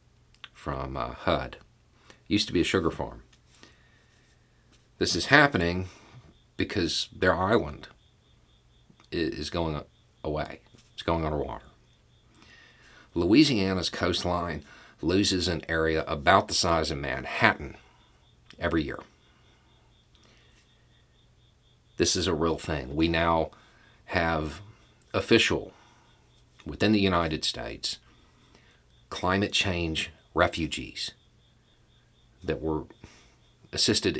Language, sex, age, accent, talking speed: English, male, 40-59, American, 90 wpm